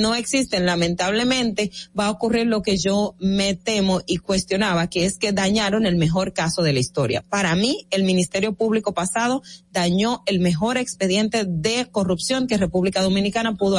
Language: Spanish